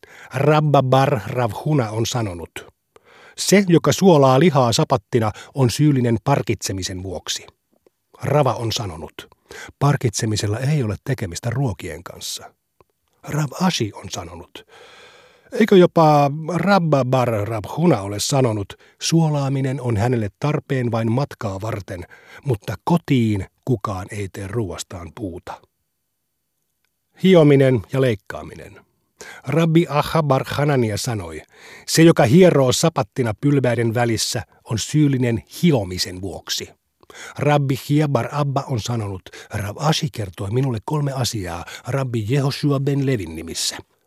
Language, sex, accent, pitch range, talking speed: Finnish, male, native, 110-145 Hz, 110 wpm